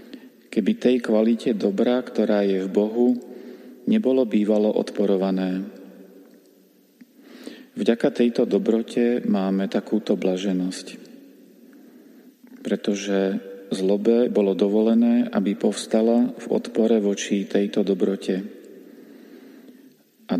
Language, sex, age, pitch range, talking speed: Slovak, male, 40-59, 100-130 Hz, 85 wpm